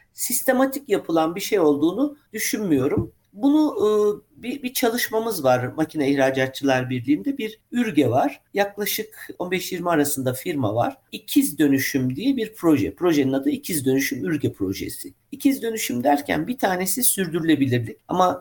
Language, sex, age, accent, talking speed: Turkish, male, 50-69, native, 135 wpm